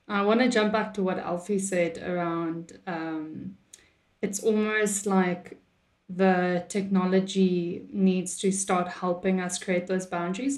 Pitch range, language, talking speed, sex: 180-210 Hz, English, 135 wpm, female